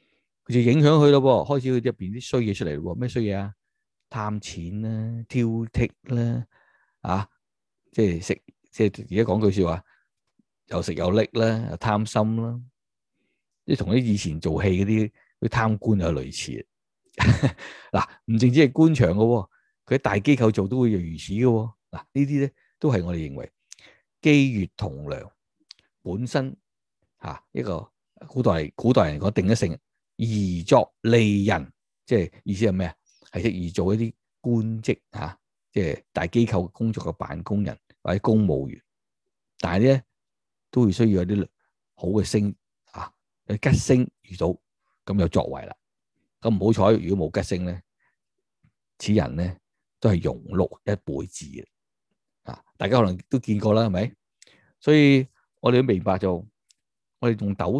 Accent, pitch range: native, 95-120 Hz